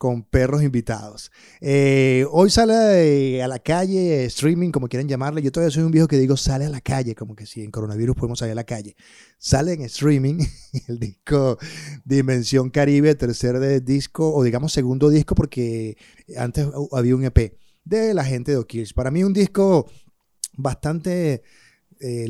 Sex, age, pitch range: male, 30-49, 120-145 Hz